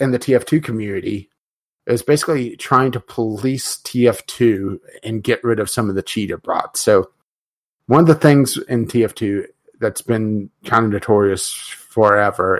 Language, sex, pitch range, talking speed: English, male, 110-130 Hz, 150 wpm